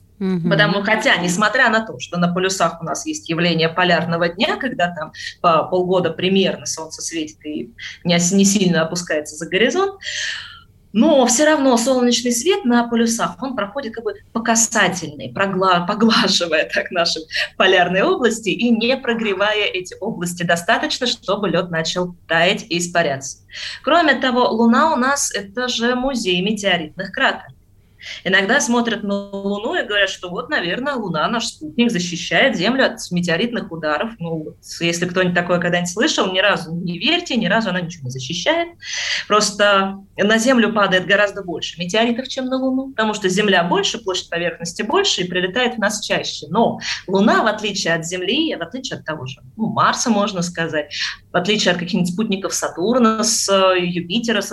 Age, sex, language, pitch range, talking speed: 20-39, female, Russian, 175-230 Hz, 160 wpm